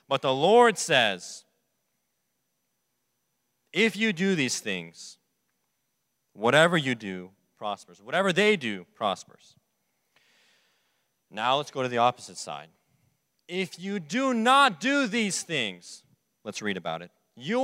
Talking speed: 120 wpm